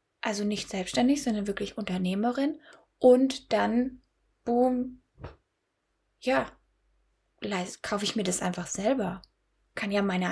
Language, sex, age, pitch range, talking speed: German, female, 10-29, 205-250 Hz, 110 wpm